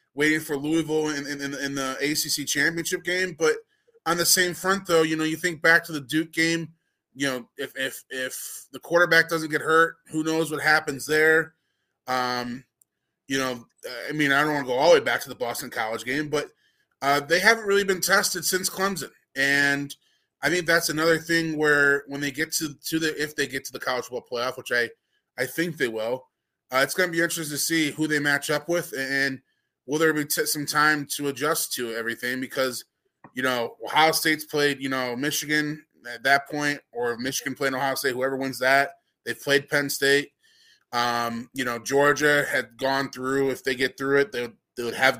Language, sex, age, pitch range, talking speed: English, male, 20-39, 130-160 Hz, 210 wpm